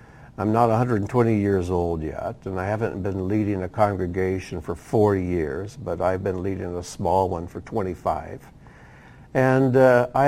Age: 60-79